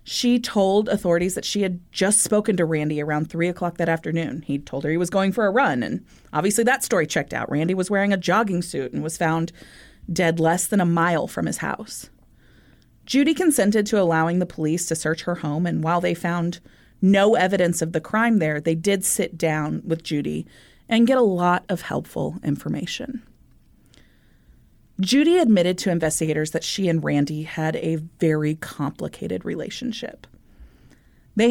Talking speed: 180 wpm